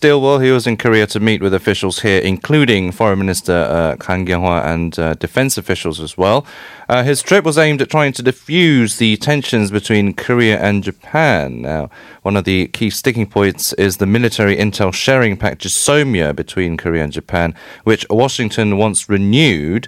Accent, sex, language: British, male, Korean